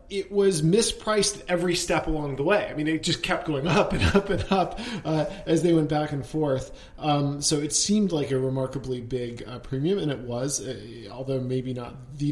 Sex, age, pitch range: male, 40-59, 130-155 Hz